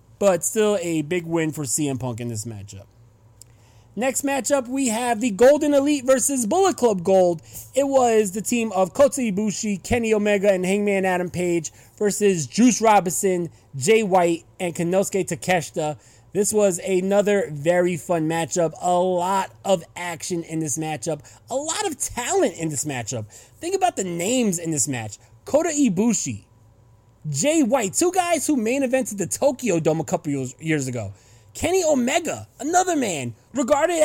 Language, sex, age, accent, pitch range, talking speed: English, male, 30-49, American, 160-265 Hz, 160 wpm